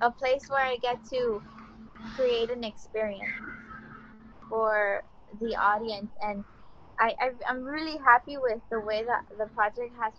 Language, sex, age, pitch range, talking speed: English, female, 20-39, 210-245 Hz, 135 wpm